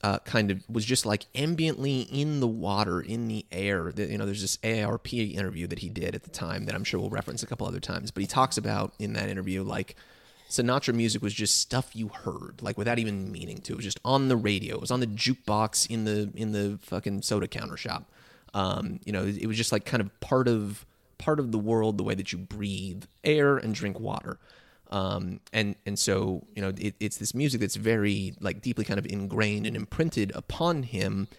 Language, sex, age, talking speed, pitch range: English, male, 20-39, 225 wpm, 100-115 Hz